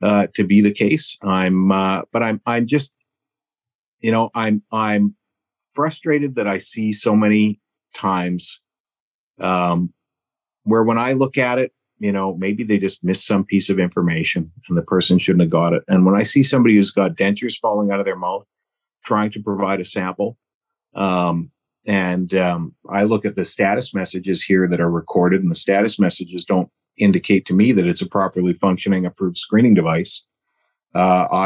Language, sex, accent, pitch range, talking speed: English, male, American, 95-110 Hz, 180 wpm